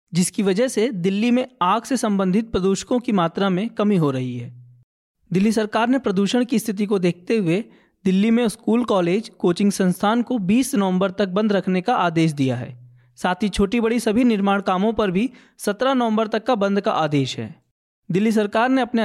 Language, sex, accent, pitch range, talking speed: Hindi, male, native, 185-230 Hz, 195 wpm